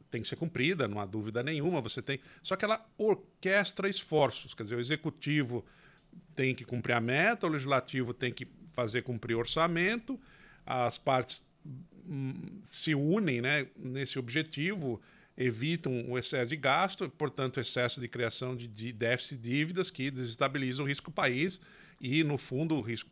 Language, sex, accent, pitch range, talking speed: Portuguese, male, Brazilian, 125-175 Hz, 160 wpm